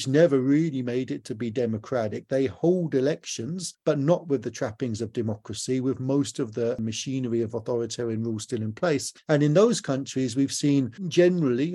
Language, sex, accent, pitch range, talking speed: English, male, British, 125-150 Hz, 180 wpm